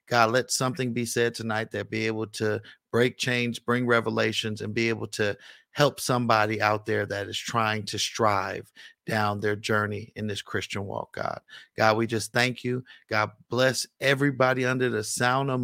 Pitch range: 110-130 Hz